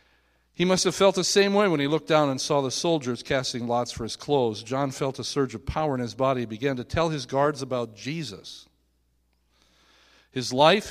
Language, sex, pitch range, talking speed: English, male, 115-160 Hz, 215 wpm